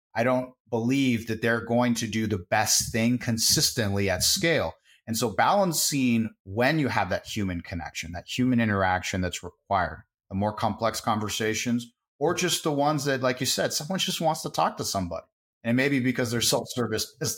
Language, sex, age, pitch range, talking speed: English, male, 30-49, 95-120 Hz, 185 wpm